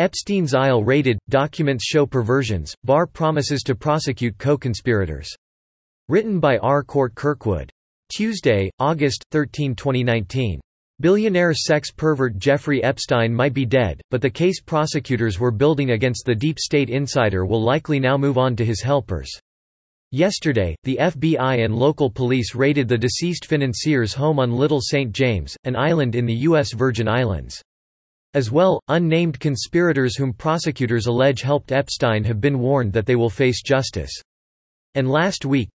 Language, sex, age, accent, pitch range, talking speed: English, male, 40-59, American, 115-145 Hz, 150 wpm